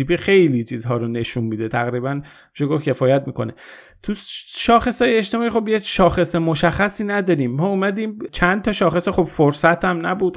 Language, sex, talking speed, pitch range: Persian, male, 145 wpm, 130-165 Hz